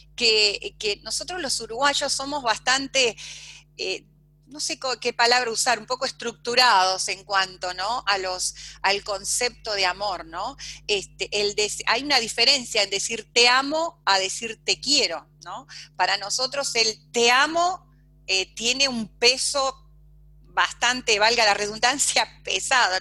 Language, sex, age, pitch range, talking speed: Spanish, female, 30-49, 195-265 Hz, 145 wpm